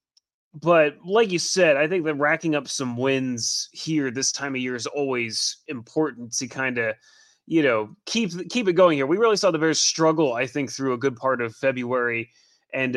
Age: 30-49